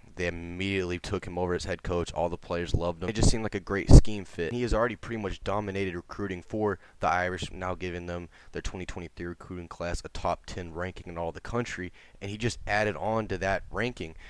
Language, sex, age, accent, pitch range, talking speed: English, male, 20-39, American, 90-105 Hz, 225 wpm